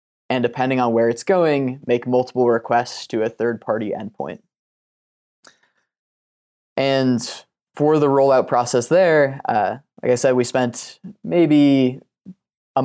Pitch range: 115-135 Hz